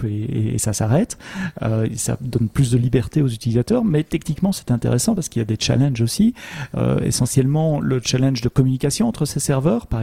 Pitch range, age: 120-145 Hz, 40-59